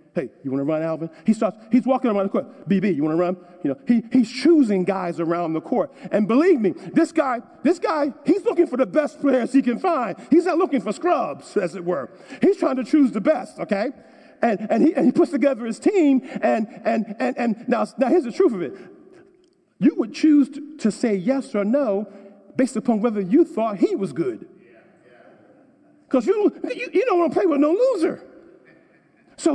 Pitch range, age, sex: 220-320 Hz, 50-69, male